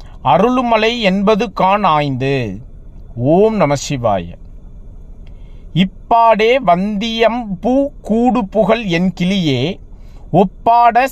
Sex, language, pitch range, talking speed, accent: male, Tamil, 145-225 Hz, 60 wpm, native